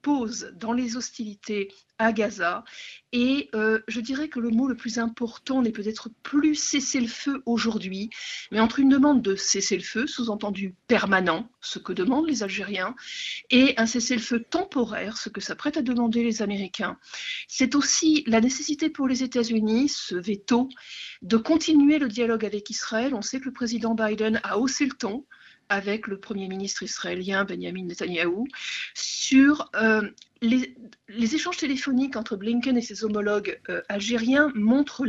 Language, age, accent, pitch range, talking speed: French, 50-69, French, 210-270 Hz, 165 wpm